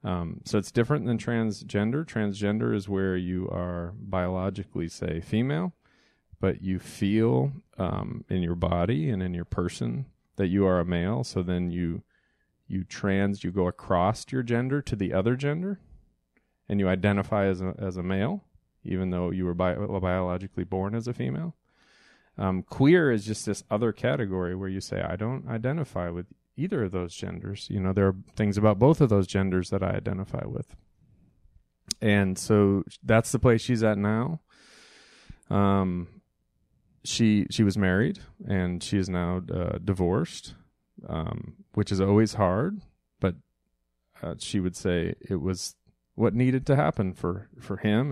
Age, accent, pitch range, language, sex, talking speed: 30-49, American, 90-110 Hz, English, male, 165 wpm